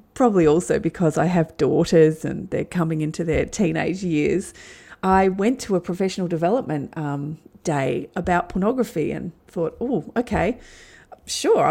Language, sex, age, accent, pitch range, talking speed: English, female, 40-59, Australian, 160-215 Hz, 145 wpm